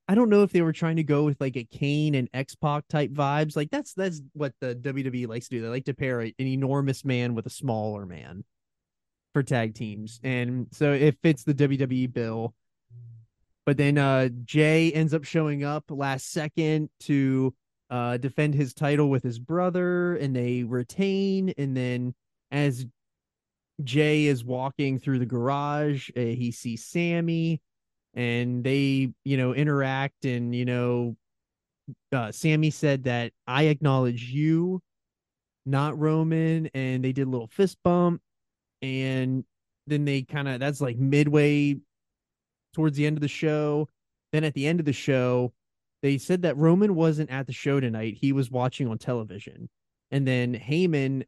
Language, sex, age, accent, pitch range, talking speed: English, male, 30-49, American, 125-150 Hz, 170 wpm